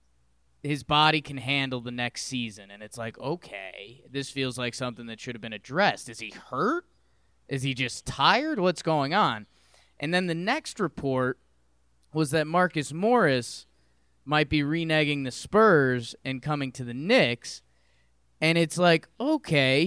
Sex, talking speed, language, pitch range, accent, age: male, 160 wpm, English, 125-180 Hz, American, 20-39